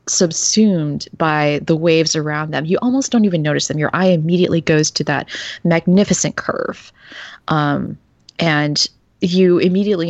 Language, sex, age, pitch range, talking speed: English, female, 20-39, 145-175 Hz, 145 wpm